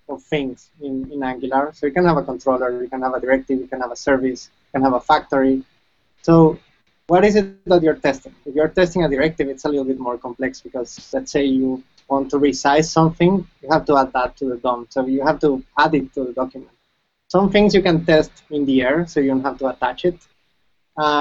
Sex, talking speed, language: male, 240 wpm, English